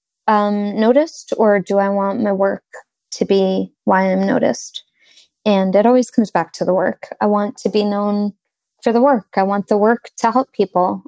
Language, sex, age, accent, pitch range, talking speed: English, female, 20-39, American, 195-230 Hz, 195 wpm